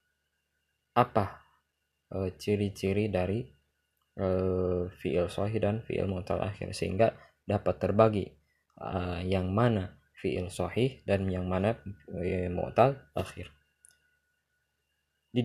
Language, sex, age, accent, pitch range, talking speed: Indonesian, male, 20-39, native, 95-120 Hz, 100 wpm